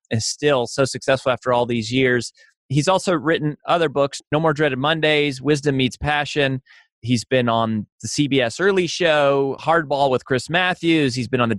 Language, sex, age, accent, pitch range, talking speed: English, male, 30-49, American, 125-155 Hz, 180 wpm